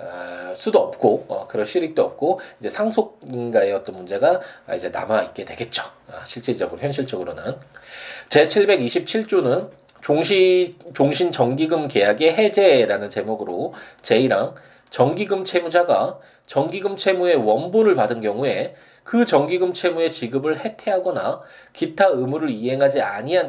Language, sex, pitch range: Korean, male, 115-185 Hz